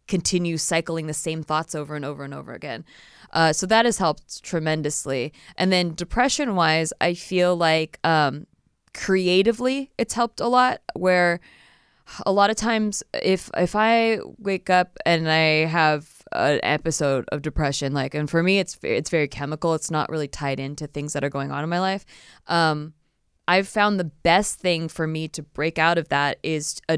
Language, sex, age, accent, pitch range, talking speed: English, female, 20-39, American, 155-210 Hz, 185 wpm